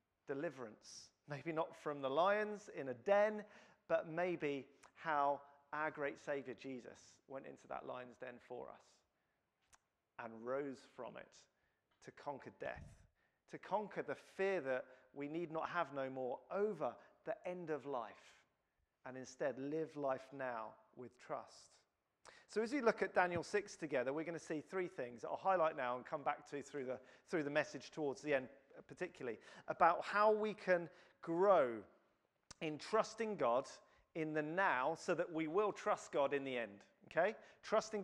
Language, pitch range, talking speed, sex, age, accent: English, 135-185 Hz, 165 wpm, male, 40-59, British